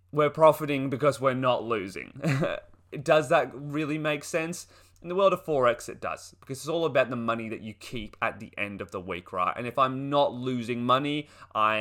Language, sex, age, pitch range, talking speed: English, male, 20-39, 110-140 Hz, 210 wpm